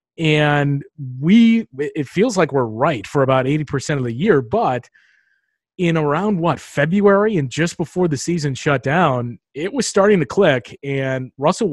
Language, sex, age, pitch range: English, male, 30-49, 125-155 Hz